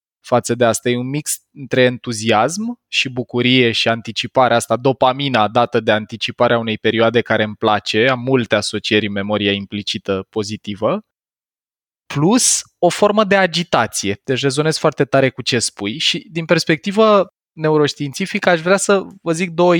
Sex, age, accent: male, 20-39, native